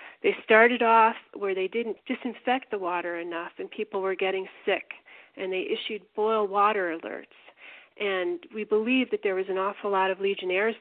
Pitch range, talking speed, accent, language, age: 195-250 Hz, 180 wpm, American, English, 40-59